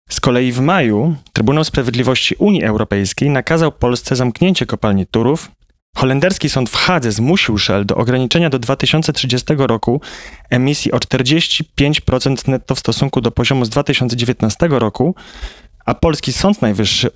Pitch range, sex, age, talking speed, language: 115-150 Hz, male, 30-49, 135 wpm, Polish